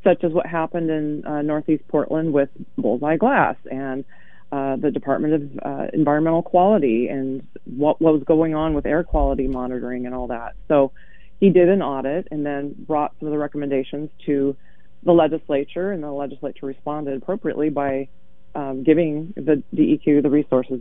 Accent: American